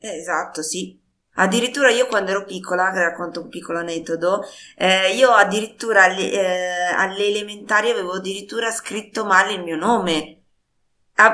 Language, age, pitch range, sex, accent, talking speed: Italian, 20-39, 165-200 Hz, female, native, 130 wpm